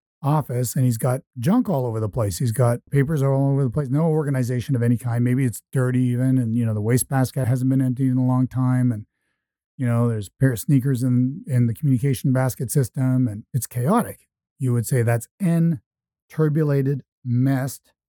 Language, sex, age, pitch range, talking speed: English, male, 50-69, 125-145 Hz, 200 wpm